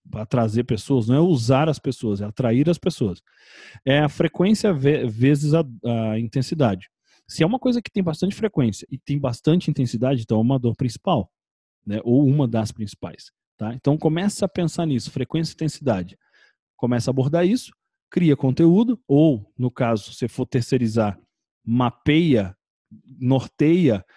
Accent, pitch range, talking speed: Brazilian, 125-165 Hz, 160 wpm